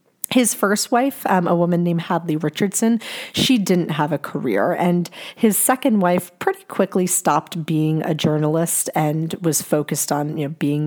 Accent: American